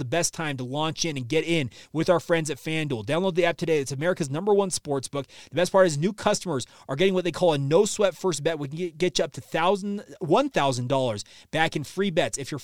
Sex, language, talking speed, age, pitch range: male, English, 245 wpm, 30-49, 145-180 Hz